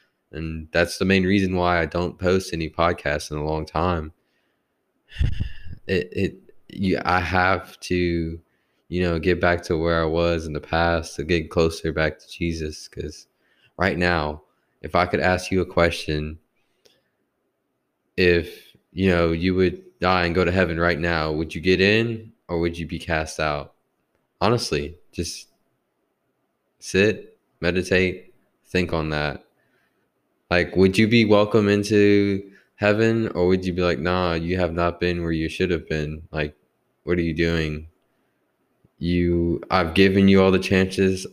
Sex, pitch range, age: male, 80-95 Hz, 20-39